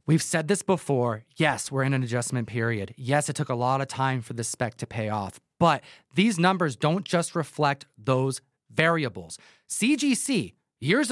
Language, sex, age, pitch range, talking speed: English, male, 30-49, 135-210 Hz, 180 wpm